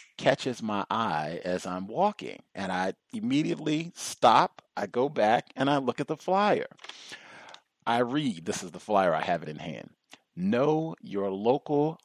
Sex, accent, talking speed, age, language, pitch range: male, American, 165 wpm, 40-59, English, 105-145 Hz